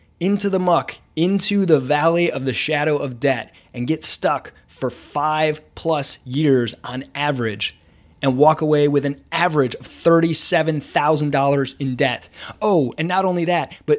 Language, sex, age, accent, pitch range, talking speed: English, male, 20-39, American, 140-195 Hz, 155 wpm